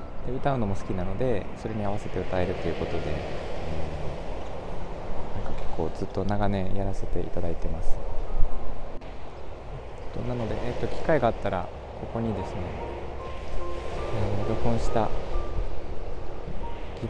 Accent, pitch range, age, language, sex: native, 85-110 Hz, 20-39, Japanese, male